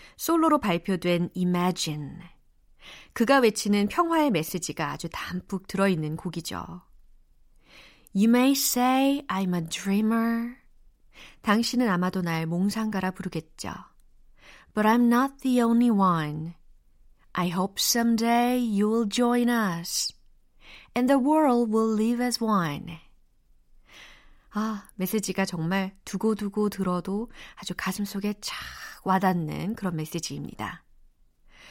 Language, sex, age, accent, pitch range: Korean, female, 30-49, native, 180-240 Hz